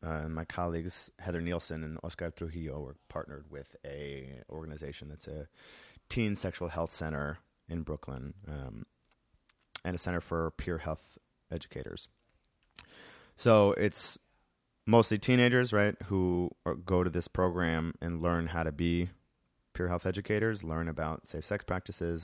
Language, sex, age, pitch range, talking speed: English, male, 30-49, 75-95 Hz, 145 wpm